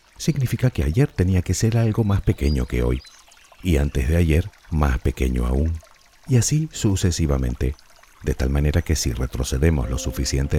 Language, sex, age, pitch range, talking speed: Spanish, male, 50-69, 70-95 Hz, 165 wpm